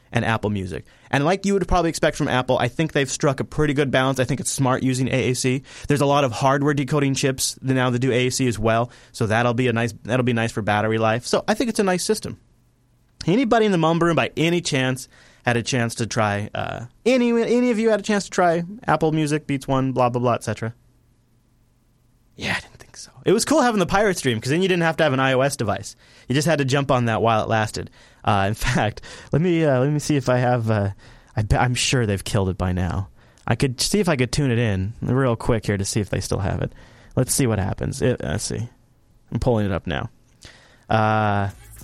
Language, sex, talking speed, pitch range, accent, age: English, male, 245 wpm, 115-150 Hz, American, 30-49